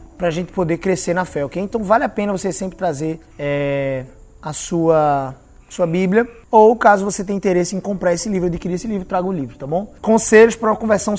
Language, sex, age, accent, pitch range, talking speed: Portuguese, male, 20-39, Brazilian, 175-225 Hz, 215 wpm